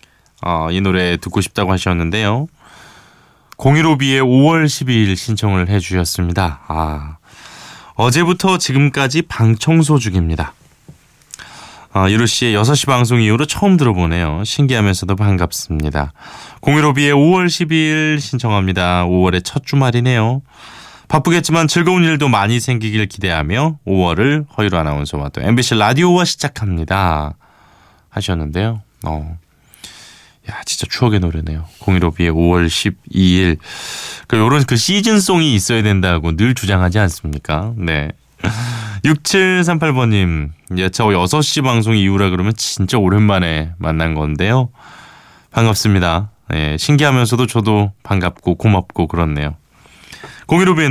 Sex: male